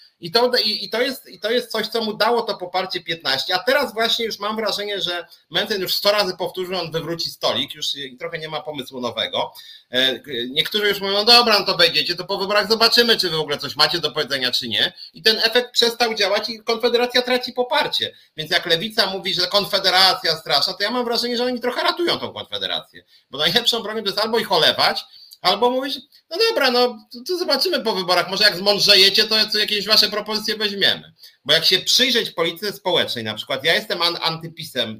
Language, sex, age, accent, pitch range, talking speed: Polish, male, 30-49, native, 155-230 Hz, 205 wpm